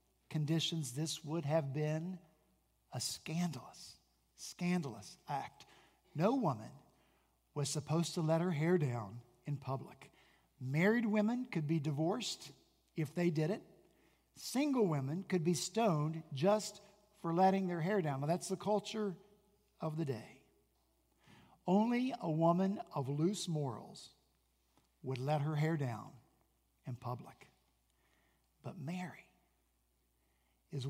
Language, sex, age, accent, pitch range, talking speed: English, male, 50-69, American, 110-175 Hz, 120 wpm